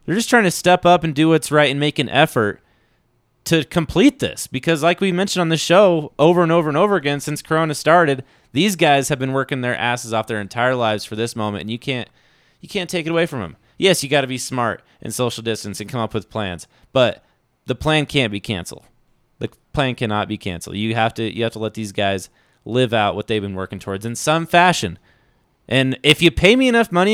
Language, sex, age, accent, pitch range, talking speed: English, male, 30-49, American, 110-150 Hz, 240 wpm